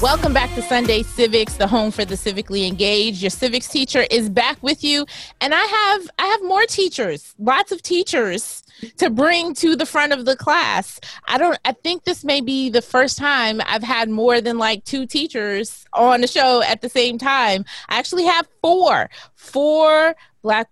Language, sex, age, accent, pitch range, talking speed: English, female, 30-49, American, 200-265 Hz, 190 wpm